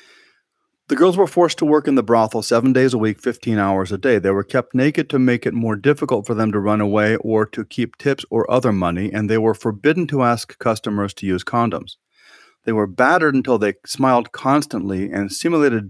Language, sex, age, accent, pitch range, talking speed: English, male, 40-59, American, 105-140 Hz, 215 wpm